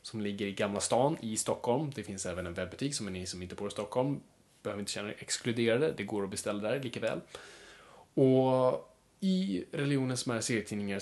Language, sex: Swedish, male